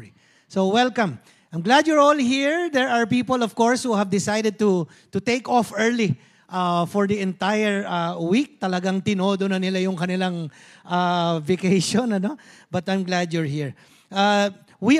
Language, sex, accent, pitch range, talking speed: English, male, Filipino, 190-260 Hz, 170 wpm